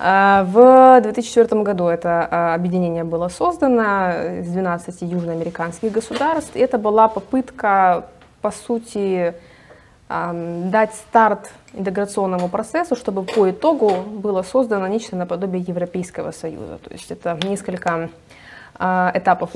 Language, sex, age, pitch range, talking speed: Russian, female, 20-39, 175-210 Hz, 105 wpm